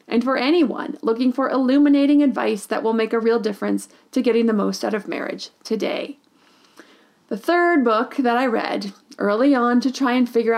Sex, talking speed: female, 185 wpm